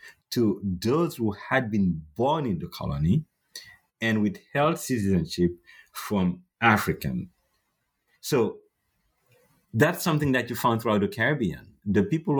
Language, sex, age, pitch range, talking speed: English, male, 50-69, 95-130 Hz, 120 wpm